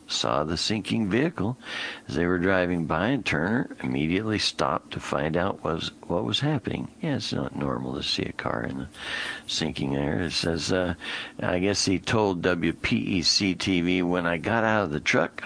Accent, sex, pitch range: American, male, 75-90 Hz